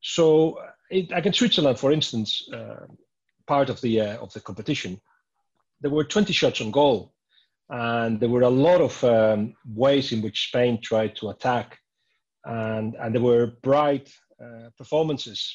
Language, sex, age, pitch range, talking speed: English, male, 40-59, 110-140 Hz, 160 wpm